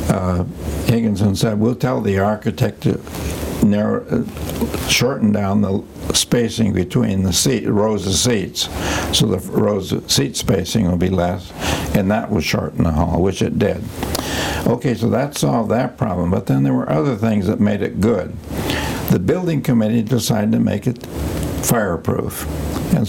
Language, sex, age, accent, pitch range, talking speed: English, male, 60-79, American, 90-115 Hz, 165 wpm